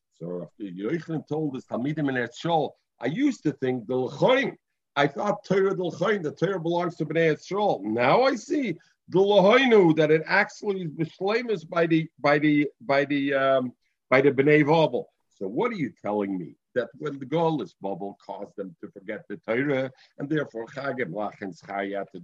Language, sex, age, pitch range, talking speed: English, male, 50-69, 130-165 Hz, 165 wpm